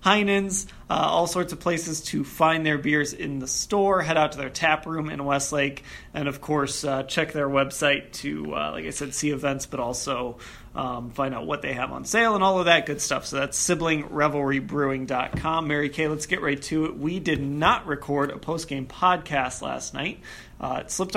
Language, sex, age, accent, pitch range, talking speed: English, male, 30-49, American, 140-165 Hz, 205 wpm